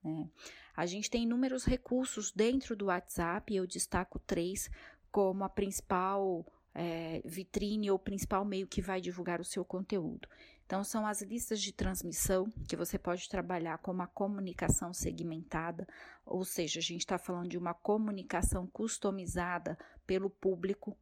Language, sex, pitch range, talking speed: Portuguese, female, 185-230 Hz, 155 wpm